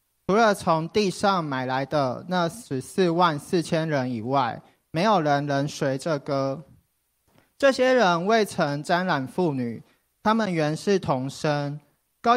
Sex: male